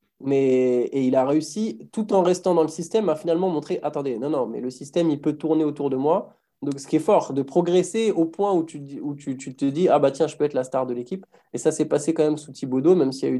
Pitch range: 150-215 Hz